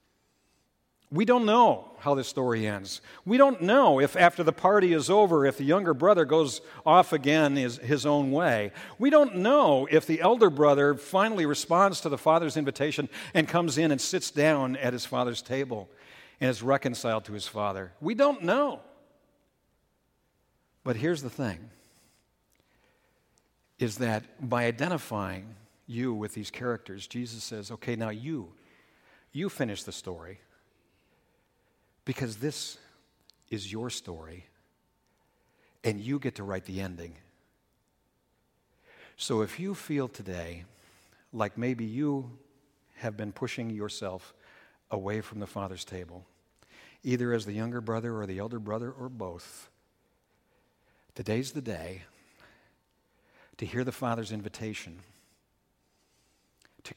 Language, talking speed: English, 135 wpm